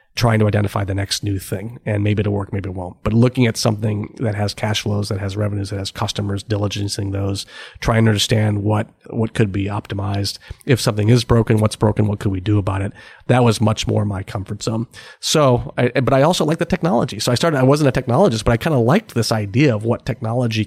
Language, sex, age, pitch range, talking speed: English, male, 30-49, 105-120 Hz, 240 wpm